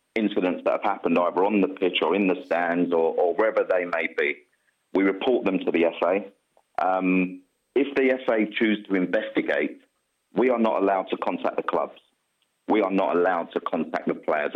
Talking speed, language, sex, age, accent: 195 wpm, English, male, 30-49, British